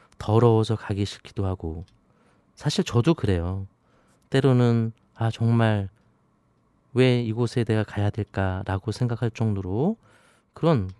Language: Korean